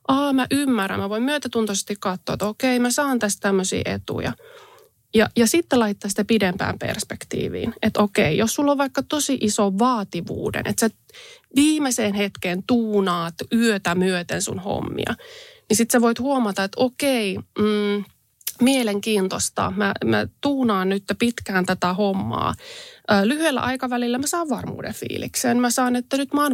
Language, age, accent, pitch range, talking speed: Finnish, 20-39, native, 200-270 Hz, 150 wpm